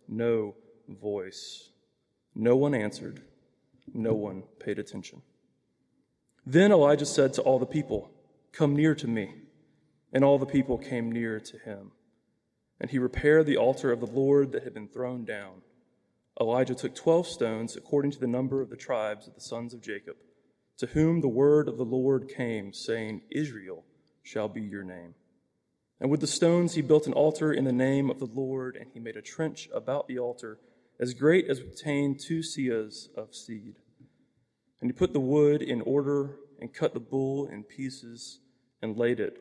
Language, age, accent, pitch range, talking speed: English, 30-49, American, 115-150 Hz, 180 wpm